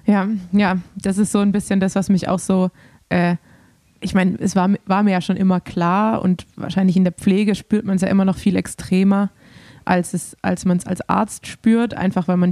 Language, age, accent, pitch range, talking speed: German, 20-39, German, 185-205 Hz, 220 wpm